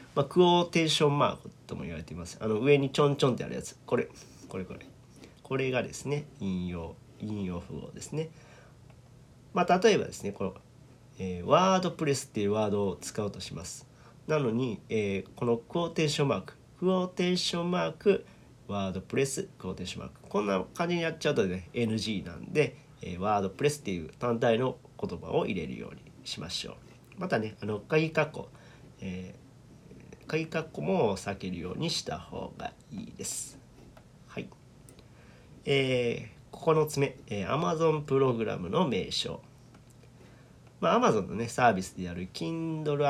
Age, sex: 40-59, male